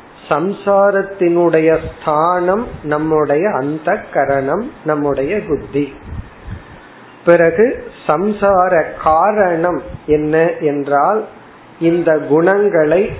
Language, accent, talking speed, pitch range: Tamil, native, 45 wpm, 145-185 Hz